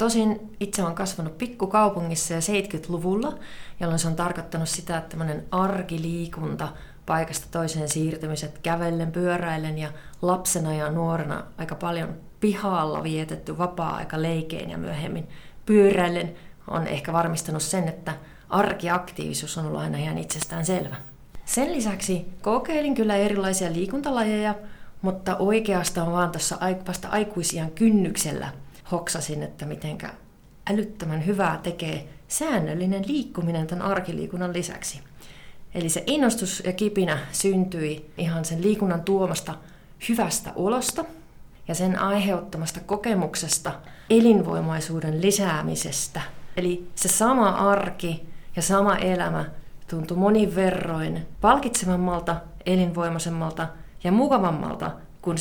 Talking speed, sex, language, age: 105 wpm, female, Finnish, 30-49